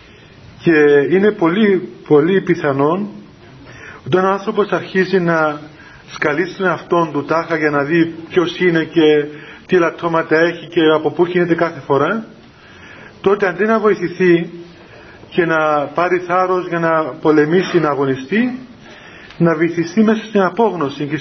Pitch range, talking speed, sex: 150-195 Hz, 140 wpm, male